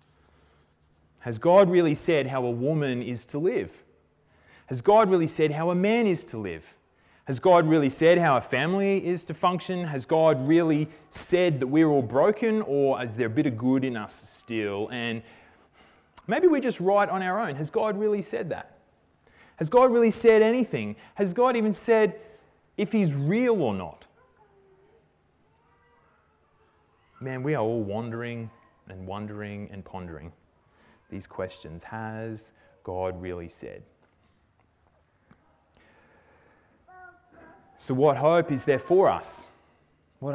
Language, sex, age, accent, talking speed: English, male, 30-49, Australian, 145 wpm